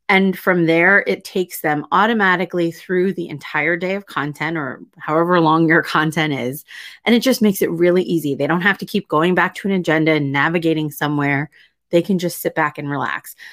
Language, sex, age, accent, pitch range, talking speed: English, female, 30-49, American, 150-185 Hz, 205 wpm